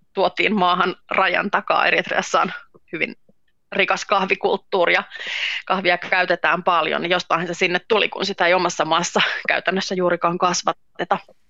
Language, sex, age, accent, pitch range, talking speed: Finnish, female, 30-49, native, 175-215 Hz, 130 wpm